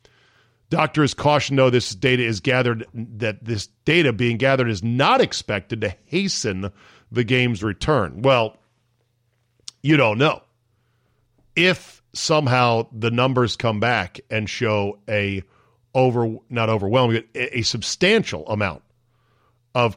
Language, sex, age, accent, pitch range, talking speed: English, male, 40-59, American, 110-130 Hz, 120 wpm